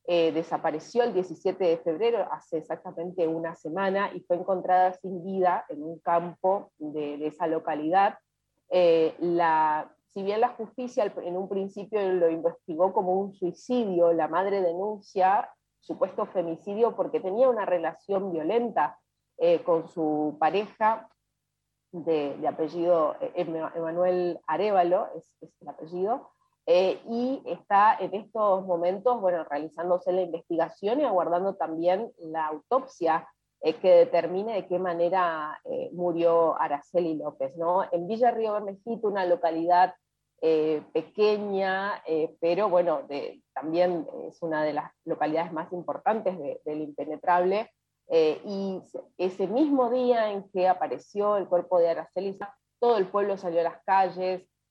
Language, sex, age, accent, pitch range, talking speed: Spanish, female, 30-49, Argentinian, 165-200 Hz, 145 wpm